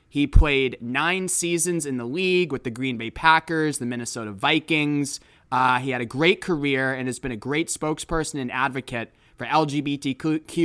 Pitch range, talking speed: 135-165 Hz, 175 wpm